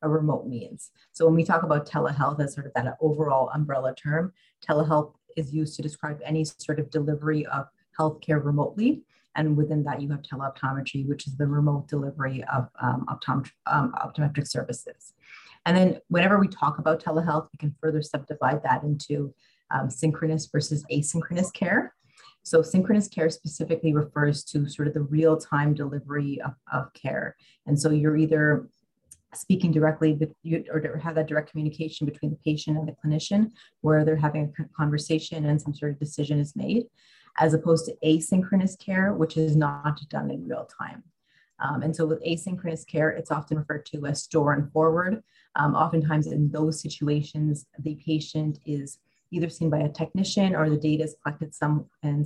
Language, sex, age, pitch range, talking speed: English, female, 30-49, 150-160 Hz, 180 wpm